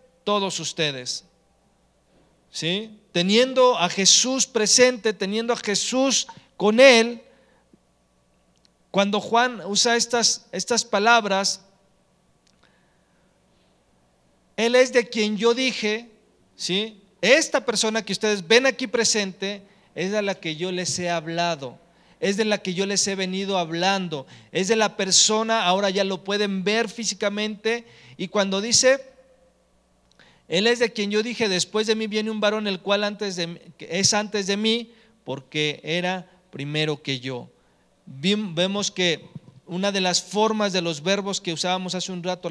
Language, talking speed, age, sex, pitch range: English, 145 wpm, 40-59, male, 175-225 Hz